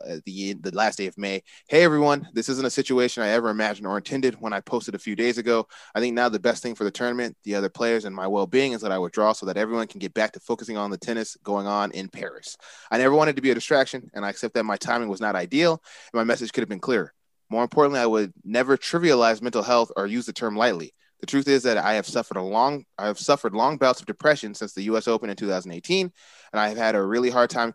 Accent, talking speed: American, 270 wpm